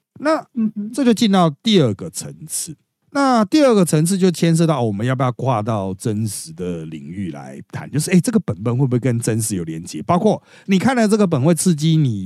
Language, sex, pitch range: Chinese, male, 110-170 Hz